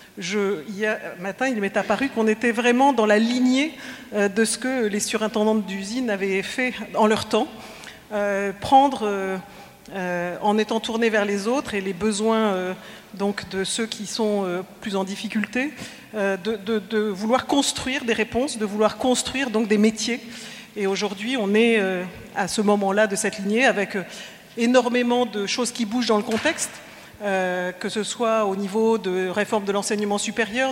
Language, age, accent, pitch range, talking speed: French, 50-69, French, 200-240 Hz, 180 wpm